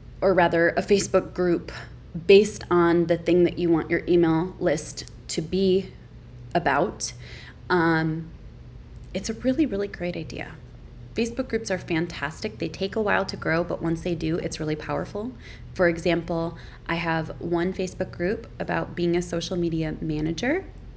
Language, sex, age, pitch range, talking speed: English, female, 20-39, 160-185 Hz, 155 wpm